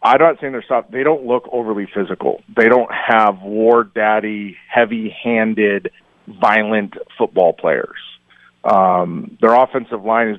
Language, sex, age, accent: English, male, 40-59, American